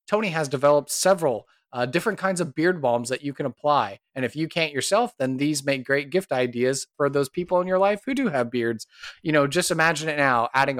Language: English